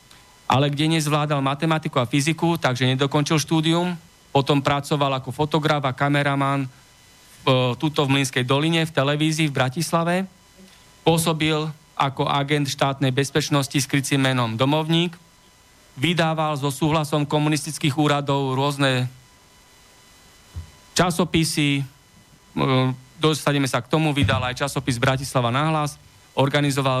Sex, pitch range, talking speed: male, 130-155 Hz, 105 wpm